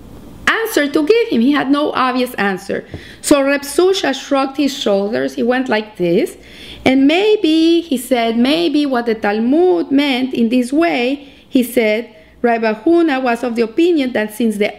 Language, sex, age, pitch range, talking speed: English, female, 40-59, 225-280 Hz, 165 wpm